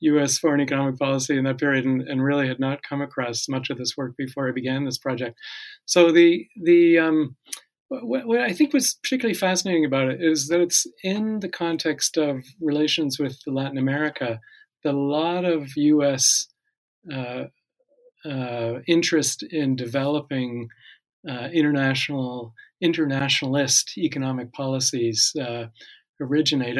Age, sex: 40-59, male